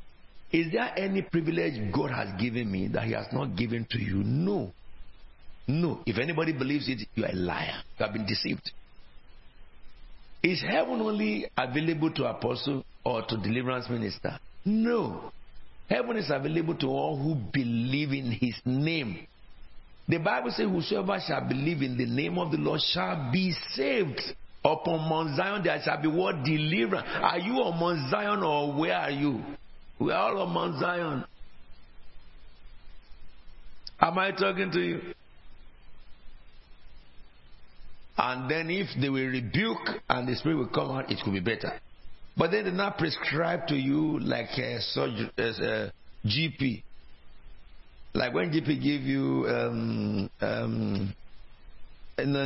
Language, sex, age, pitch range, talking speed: English, male, 60-79, 115-165 Hz, 150 wpm